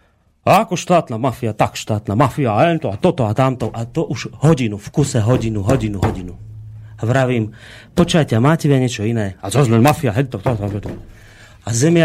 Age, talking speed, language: 30-49, 190 wpm, Slovak